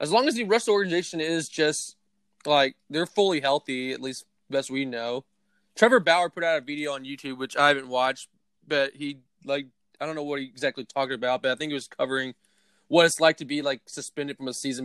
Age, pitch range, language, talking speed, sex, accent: 20-39, 140-190 Hz, English, 225 wpm, male, American